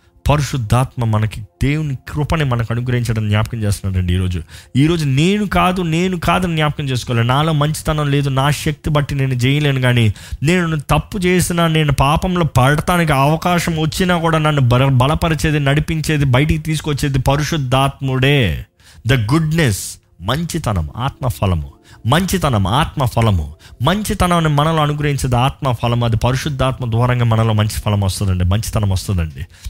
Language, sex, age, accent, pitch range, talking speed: Telugu, male, 20-39, native, 110-150 Hz, 125 wpm